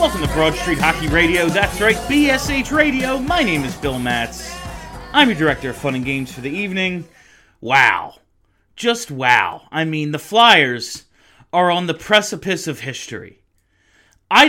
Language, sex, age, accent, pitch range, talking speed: English, male, 30-49, American, 120-175 Hz, 160 wpm